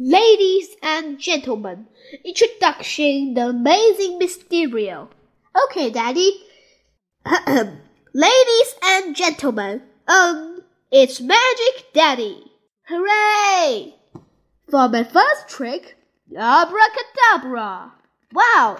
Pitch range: 250-415 Hz